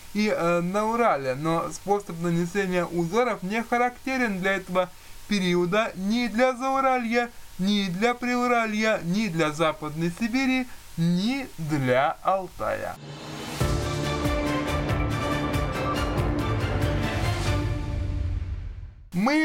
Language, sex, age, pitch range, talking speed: Russian, male, 20-39, 155-215 Hz, 85 wpm